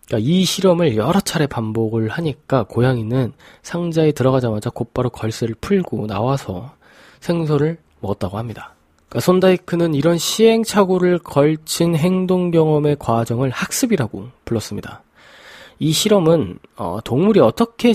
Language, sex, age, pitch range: Korean, male, 20-39, 120-170 Hz